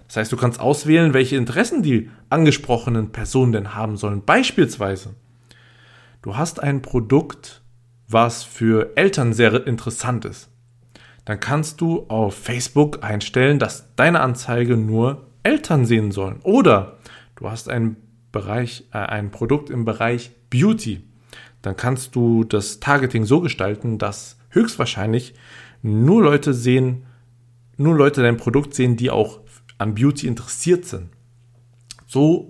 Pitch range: 115-135 Hz